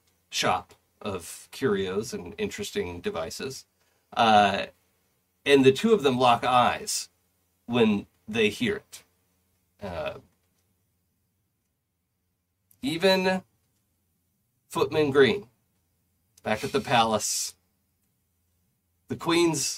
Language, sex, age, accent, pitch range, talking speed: English, male, 40-59, American, 90-140 Hz, 85 wpm